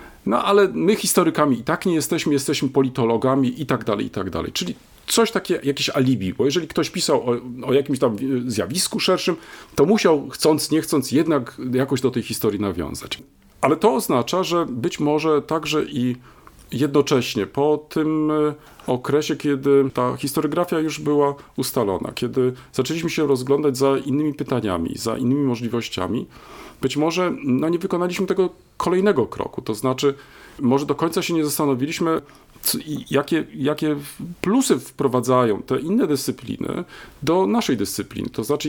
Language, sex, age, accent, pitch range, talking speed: Polish, male, 40-59, native, 125-160 Hz, 155 wpm